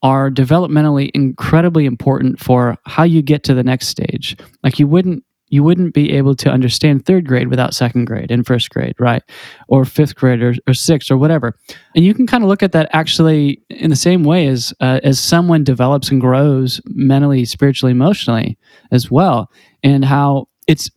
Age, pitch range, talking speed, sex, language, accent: 20-39, 130-155 Hz, 190 wpm, male, English, American